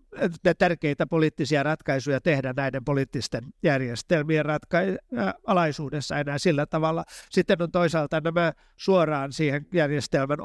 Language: Finnish